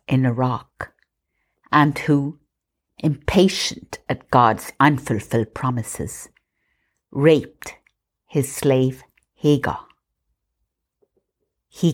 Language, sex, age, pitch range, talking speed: English, female, 60-79, 125-150 Hz, 70 wpm